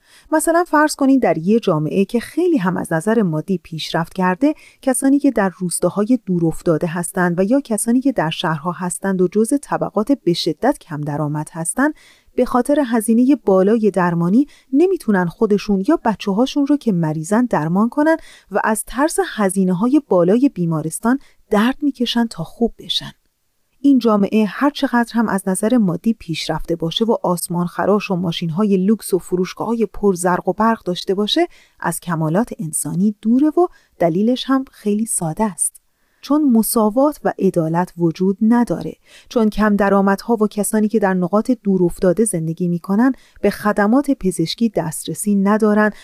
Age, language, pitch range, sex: 30-49, Persian, 180-250 Hz, female